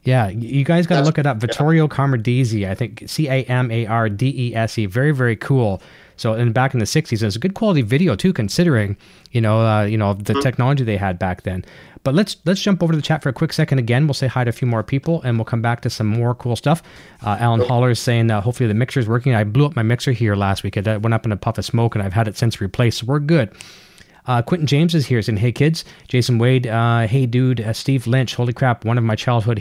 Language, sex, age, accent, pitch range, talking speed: English, male, 30-49, American, 110-130 Hz, 275 wpm